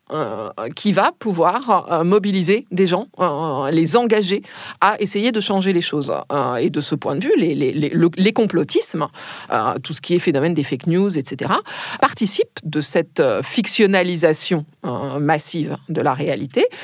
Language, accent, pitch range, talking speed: French, French, 155-210 Hz, 150 wpm